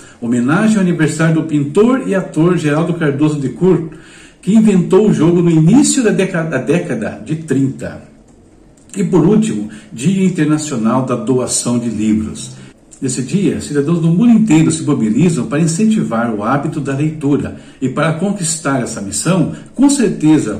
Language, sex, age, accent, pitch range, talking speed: Portuguese, male, 60-79, Brazilian, 125-175 Hz, 150 wpm